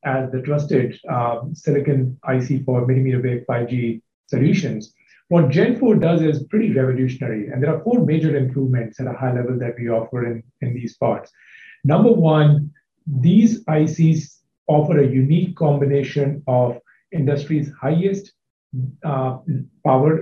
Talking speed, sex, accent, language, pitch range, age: 140 wpm, male, Indian, English, 130-160 Hz, 50-69